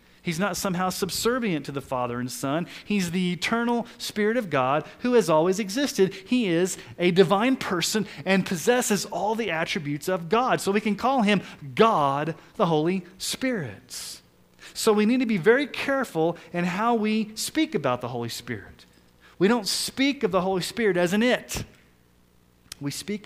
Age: 30-49